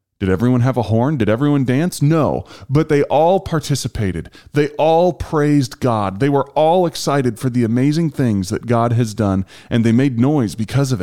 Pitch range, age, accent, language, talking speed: 95-140 Hz, 30-49, American, English, 190 wpm